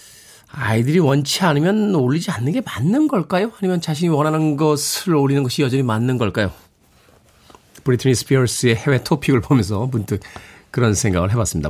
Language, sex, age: Korean, male, 40-59